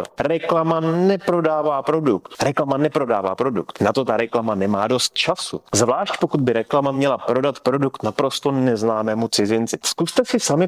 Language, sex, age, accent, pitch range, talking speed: Czech, male, 30-49, native, 120-155 Hz, 145 wpm